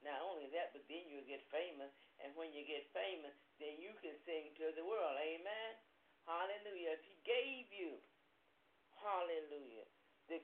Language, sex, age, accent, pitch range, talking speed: English, male, 50-69, American, 150-180 Hz, 160 wpm